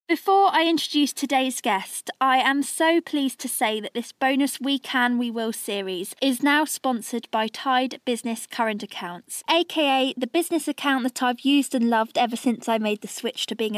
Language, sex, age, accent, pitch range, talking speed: English, female, 20-39, British, 220-280 Hz, 190 wpm